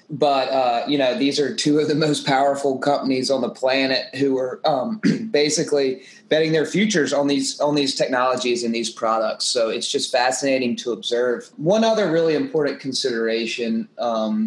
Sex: male